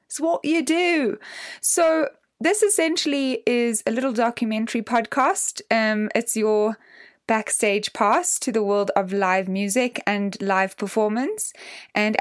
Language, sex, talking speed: English, female, 135 wpm